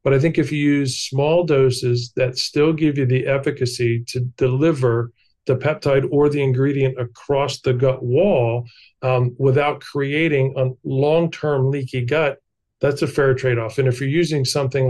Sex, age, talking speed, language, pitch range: male, 40-59, 165 wpm, English, 125-145 Hz